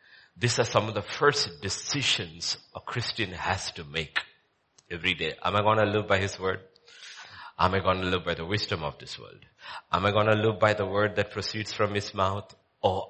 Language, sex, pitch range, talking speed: English, male, 95-125 Hz, 215 wpm